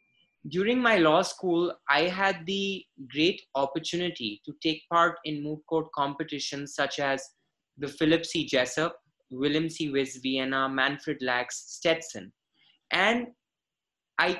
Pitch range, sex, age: 150-185 Hz, male, 20-39